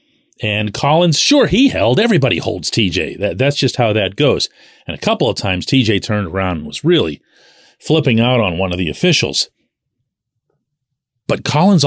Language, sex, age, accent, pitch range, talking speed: English, male, 40-59, American, 100-150 Hz, 165 wpm